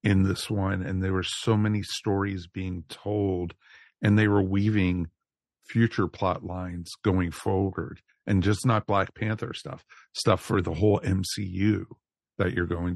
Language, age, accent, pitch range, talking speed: English, 50-69, American, 90-105 Hz, 155 wpm